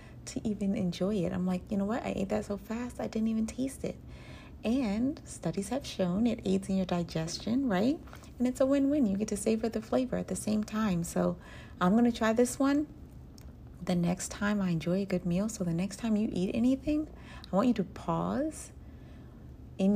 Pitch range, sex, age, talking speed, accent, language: 175-220 Hz, female, 40-59, 215 wpm, American, English